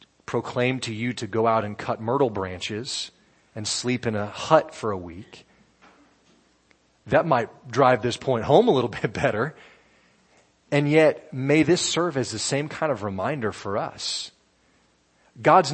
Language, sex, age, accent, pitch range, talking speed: English, male, 30-49, American, 105-150 Hz, 160 wpm